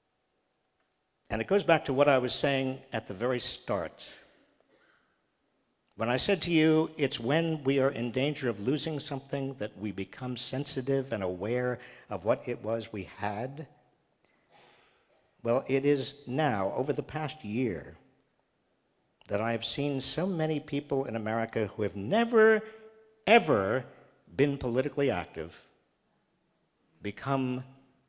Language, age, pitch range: English, 50-69, 115-160 Hz